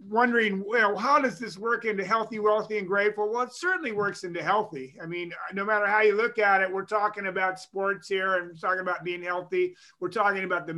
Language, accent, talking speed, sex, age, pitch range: English, American, 225 wpm, male, 30-49, 180-215 Hz